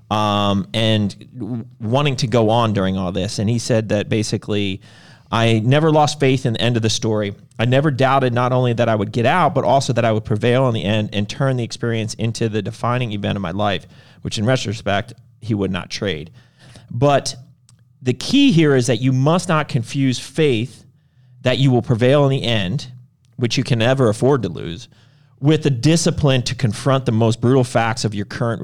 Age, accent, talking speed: 40-59, American, 205 wpm